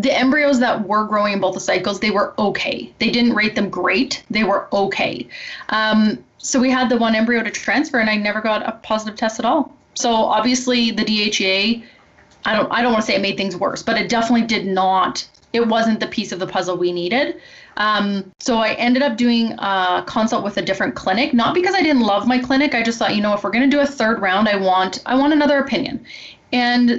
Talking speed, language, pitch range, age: 235 wpm, English, 200-255 Hz, 20-39